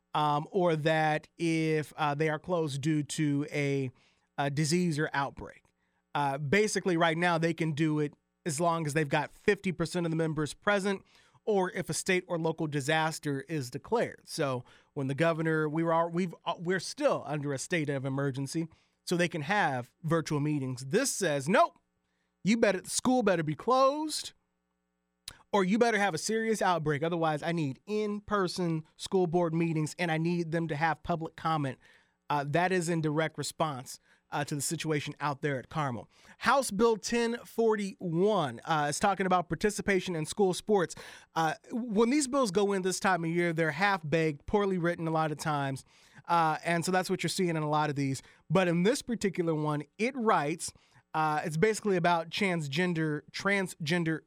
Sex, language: male, English